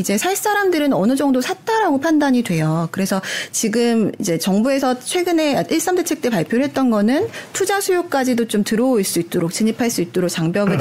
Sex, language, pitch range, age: female, Korean, 195-285 Hz, 30-49